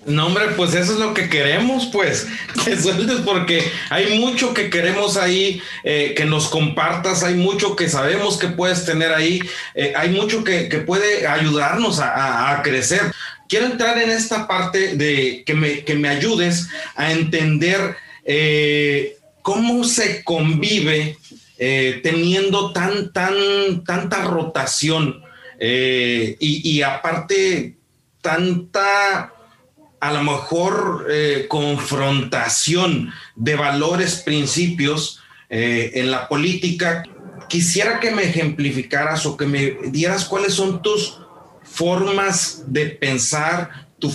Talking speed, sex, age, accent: 130 wpm, male, 40-59, Mexican